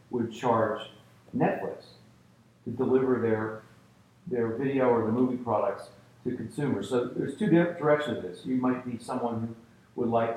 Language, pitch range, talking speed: English, 105-130 Hz, 160 wpm